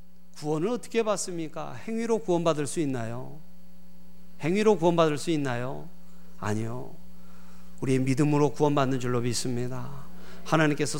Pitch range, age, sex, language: 150-225 Hz, 40-59, male, Korean